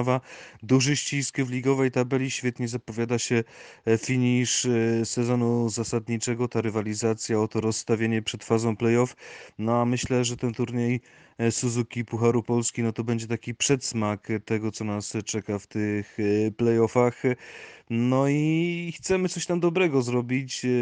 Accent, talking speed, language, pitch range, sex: native, 135 wpm, Polish, 110-125 Hz, male